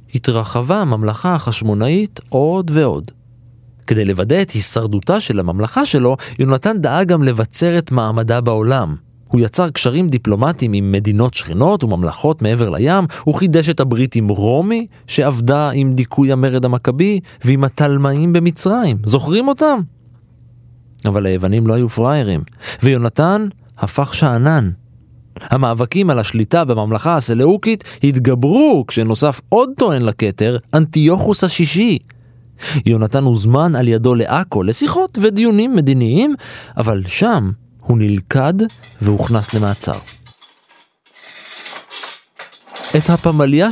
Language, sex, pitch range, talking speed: Hebrew, male, 110-155 Hz, 110 wpm